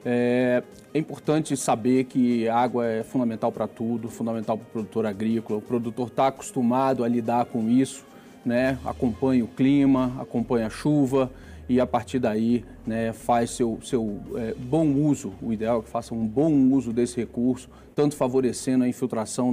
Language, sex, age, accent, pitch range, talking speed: Portuguese, male, 40-59, Brazilian, 120-135 Hz, 165 wpm